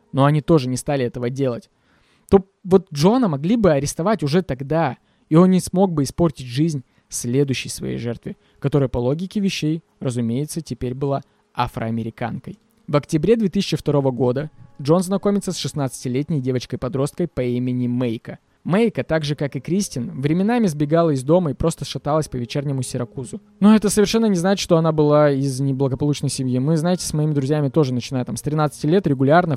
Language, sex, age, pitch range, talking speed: Russian, male, 20-39, 130-170 Hz, 170 wpm